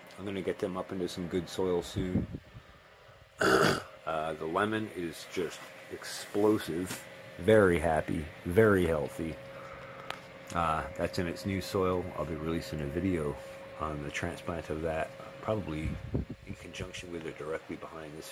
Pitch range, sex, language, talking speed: 80-95 Hz, male, English, 150 wpm